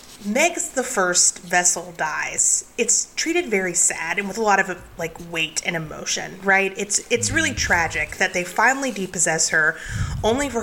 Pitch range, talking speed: 175-210 Hz, 170 wpm